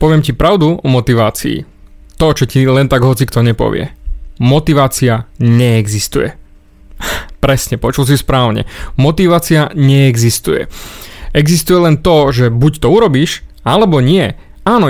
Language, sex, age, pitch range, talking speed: Slovak, male, 30-49, 130-170 Hz, 125 wpm